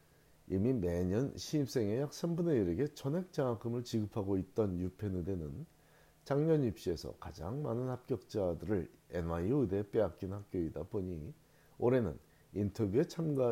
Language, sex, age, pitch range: Korean, male, 40-59, 90-130 Hz